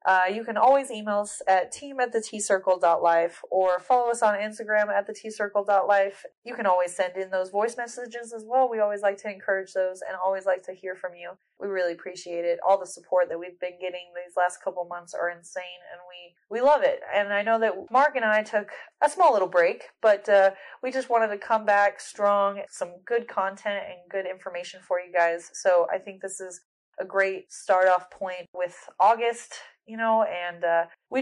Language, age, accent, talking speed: English, 20-39, American, 215 wpm